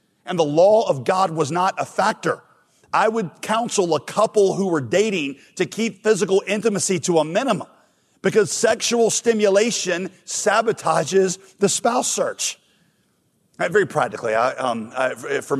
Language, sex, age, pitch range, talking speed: English, male, 40-59, 135-180 Hz, 135 wpm